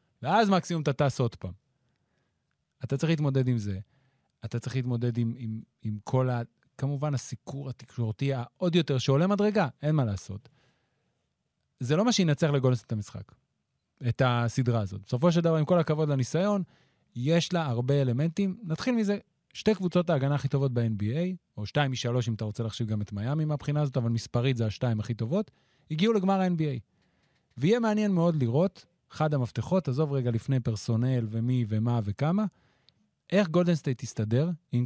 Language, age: Hebrew, 30-49